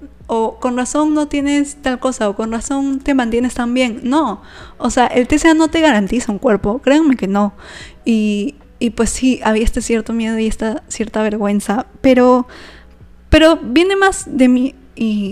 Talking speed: 180 wpm